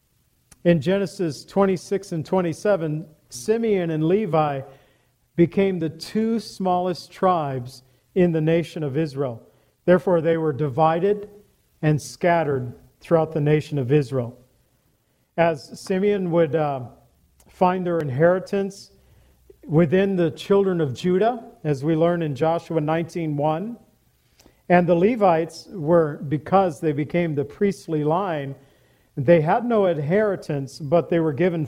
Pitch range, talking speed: 150-185 Hz, 125 wpm